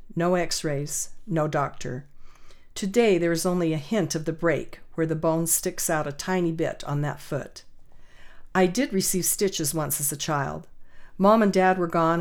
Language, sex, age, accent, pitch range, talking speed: English, female, 50-69, American, 155-190 Hz, 180 wpm